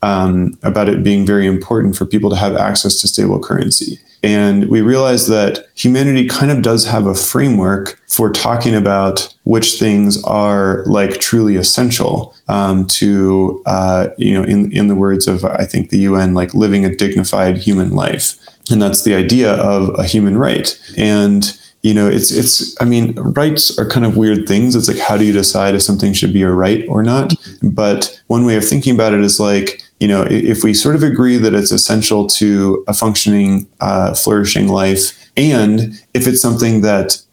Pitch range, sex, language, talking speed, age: 100-115 Hz, male, English, 190 wpm, 20-39